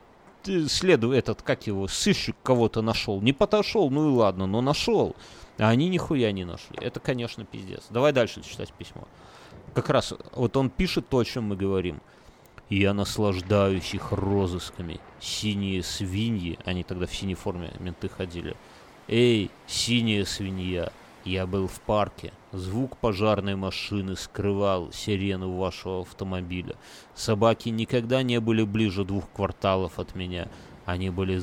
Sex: male